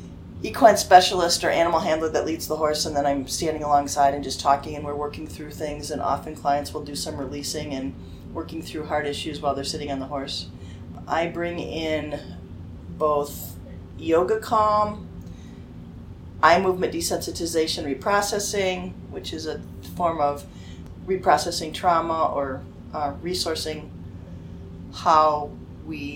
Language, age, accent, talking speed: English, 30-49, American, 140 wpm